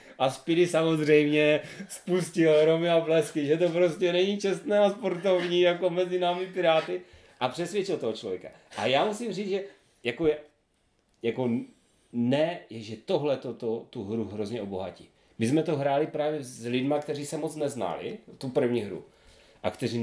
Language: Czech